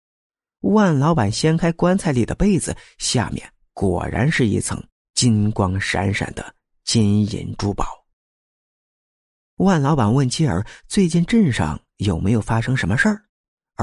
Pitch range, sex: 95-145 Hz, male